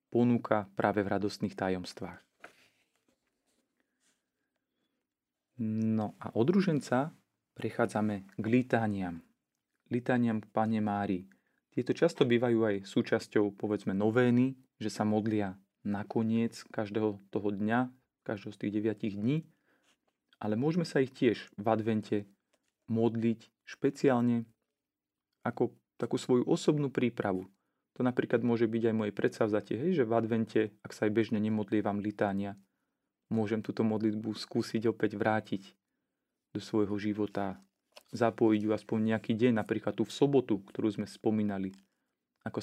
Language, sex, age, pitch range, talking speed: Slovak, male, 30-49, 105-120 Hz, 120 wpm